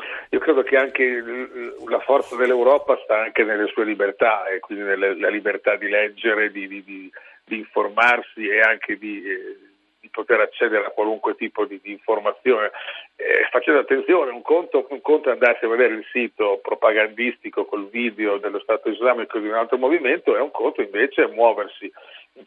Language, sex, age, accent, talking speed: Italian, male, 50-69, native, 175 wpm